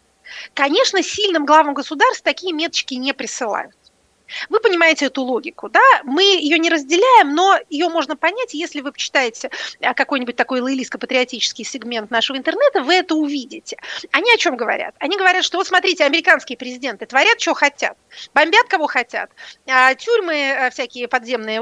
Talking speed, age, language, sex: 150 wpm, 30-49, Russian, female